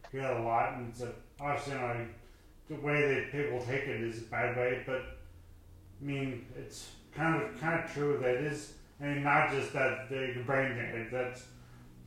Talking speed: 215 wpm